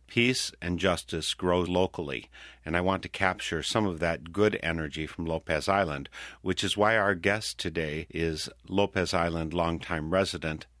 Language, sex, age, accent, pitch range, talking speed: English, male, 50-69, American, 80-95 Hz, 160 wpm